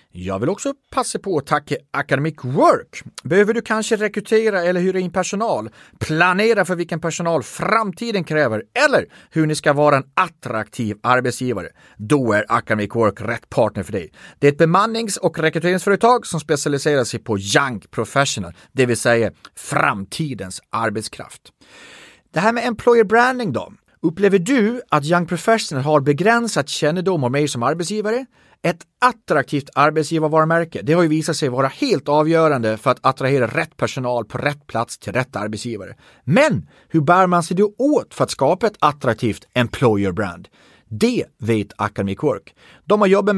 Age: 30-49